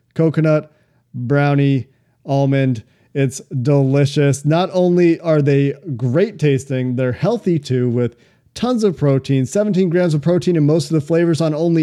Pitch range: 135-165 Hz